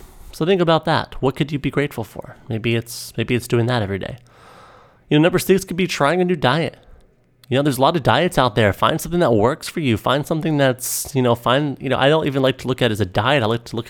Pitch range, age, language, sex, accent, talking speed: 110-145 Hz, 30-49, English, male, American, 285 wpm